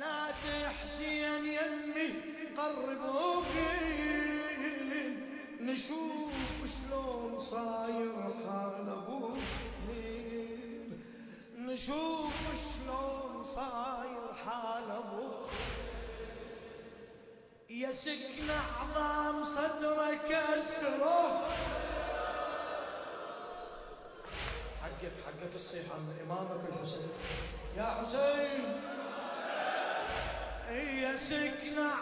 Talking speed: 50 wpm